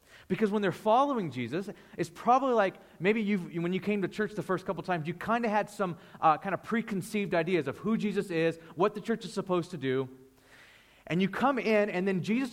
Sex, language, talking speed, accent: male, English, 225 wpm, American